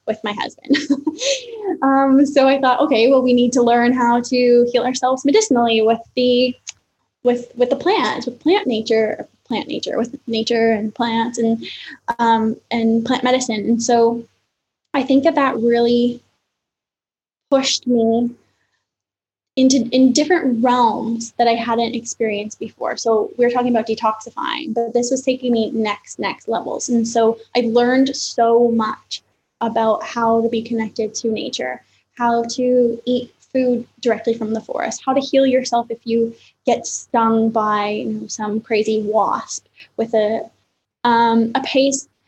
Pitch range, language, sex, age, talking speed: 225-260 Hz, English, female, 10-29, 150 wpm